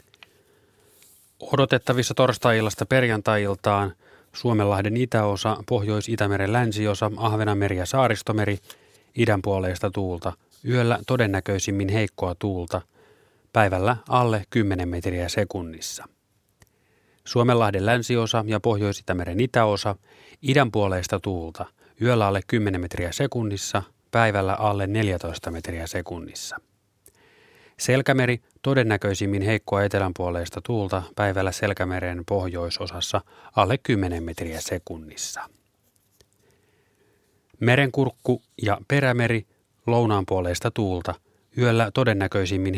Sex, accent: male, native